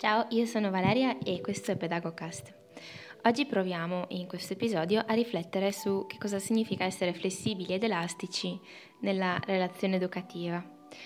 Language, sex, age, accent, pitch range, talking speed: Italian, female, 20-39, native, 170-200 Hz, 140 wpm